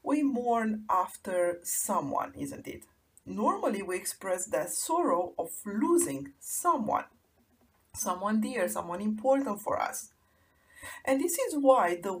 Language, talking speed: English, 125 wpm